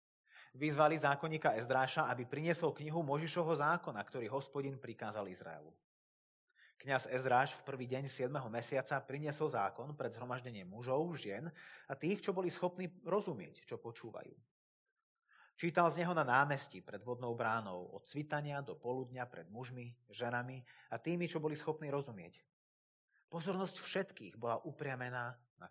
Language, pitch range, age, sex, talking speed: Slovak, 120-160 Hz, 30-49, male, 140 wpm